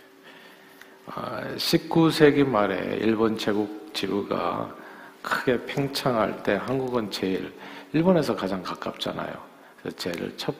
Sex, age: male, 50-69